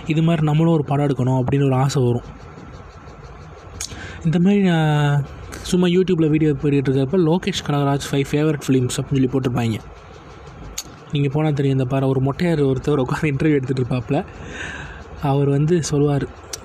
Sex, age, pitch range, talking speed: male, 20-39, 130-160 Hz, 145 wpm